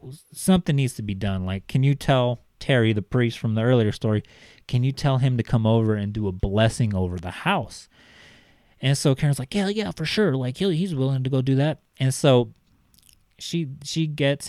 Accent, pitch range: American, 110-135 Hz